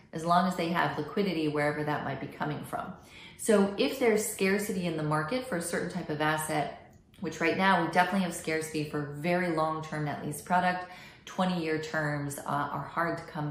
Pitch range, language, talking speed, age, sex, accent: 155-205 Hz, English, 195 wpm, 30-49, female, American